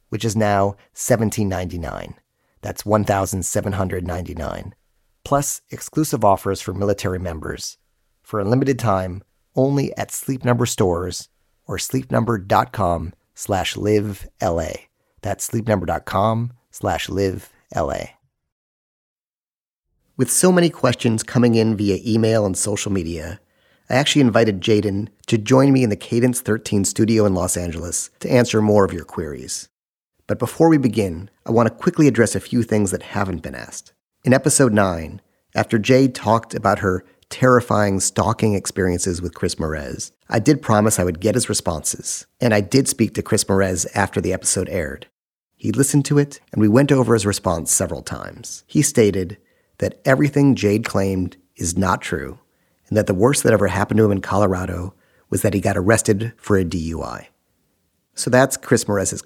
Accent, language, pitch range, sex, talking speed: American, English, 95-120 Hz, male, 155 wpm